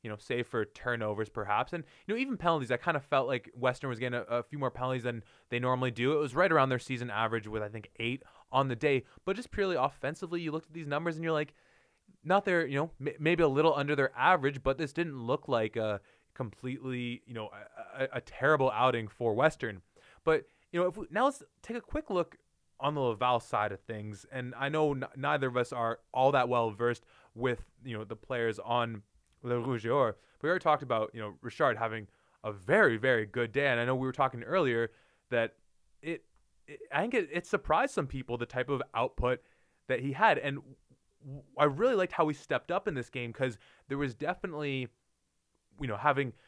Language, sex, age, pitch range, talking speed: English, male, 20-39, 120-150 Hz, 225 wpm